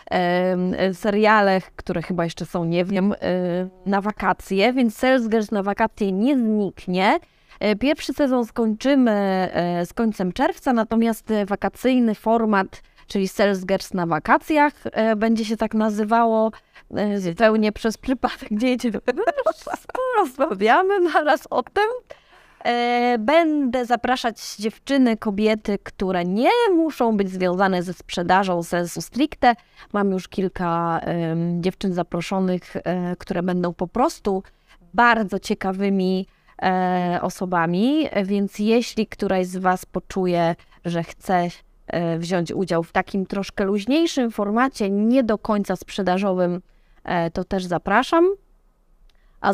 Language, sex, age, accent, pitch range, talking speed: Polish, female, 20-39, native, 180-235 Hz, 110 wpm